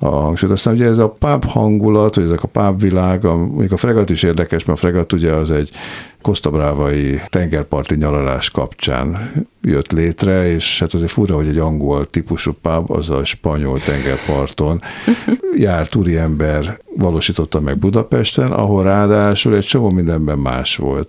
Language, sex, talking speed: Hungarian, male, 155 wpm